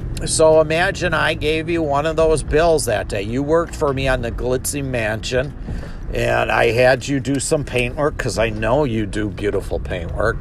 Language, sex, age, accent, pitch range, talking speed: English, male, 50-69, American, 115-150 Hz, 190 wpm